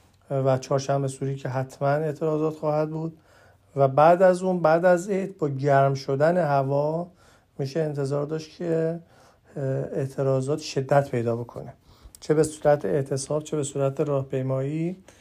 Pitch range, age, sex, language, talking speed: 130-155 Hz, 50-69, male, Persian, 140 wpm